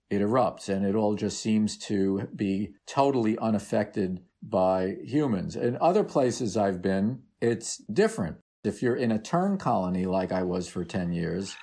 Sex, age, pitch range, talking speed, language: male, 50-69, 100-130 Hz, 165 wpm, English